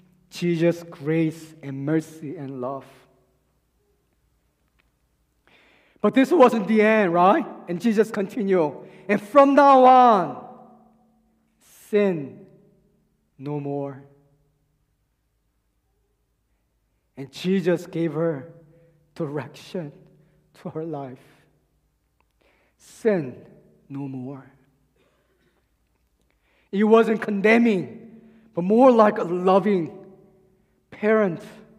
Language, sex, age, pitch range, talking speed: English, male, 40-59, 135-195 Hz, 80 wpm